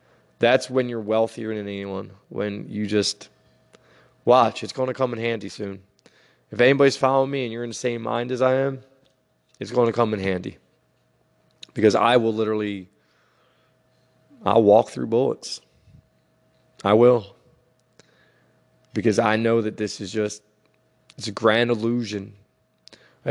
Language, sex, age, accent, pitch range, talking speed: English, male, 20-39, American, 105-125 Hz, 145 wpm